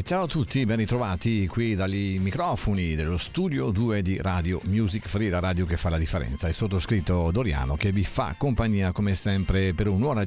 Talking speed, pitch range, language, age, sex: 185 wpm, 90-115 Hz, Italian, 50-69, male